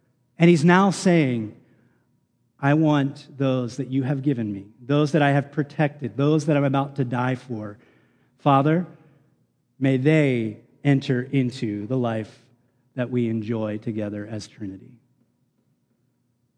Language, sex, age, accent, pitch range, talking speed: English, male, 30-49, American, 130-155 Hz, 135 wpm